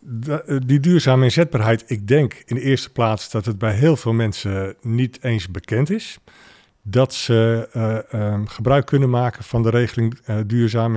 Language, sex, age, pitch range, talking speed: Dutch, male, 50-69, 110-135 Hz, 165 wpm